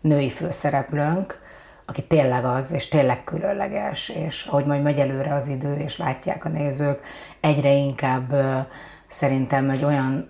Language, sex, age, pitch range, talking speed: Hungarian, female, 30-49, 140-155 Hz, 140 wpm